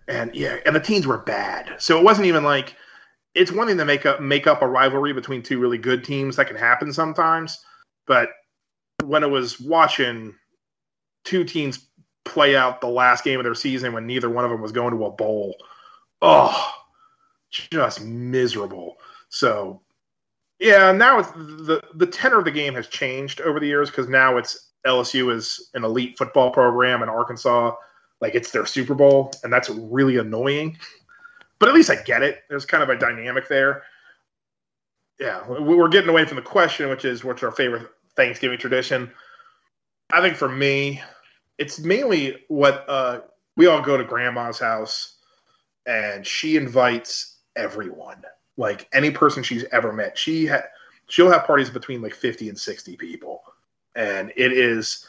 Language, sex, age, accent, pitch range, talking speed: English, male, 30-49, American, 125-155 Hz, 170 wpm